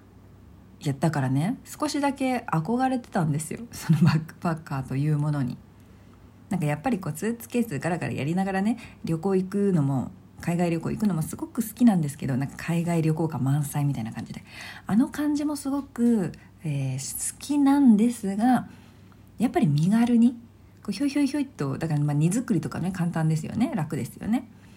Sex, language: female, Japanese